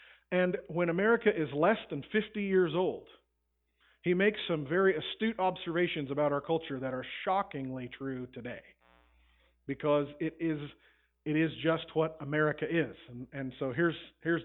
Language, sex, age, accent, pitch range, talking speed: English, male, 40-59, American, 140-195 Hz, 155 wpm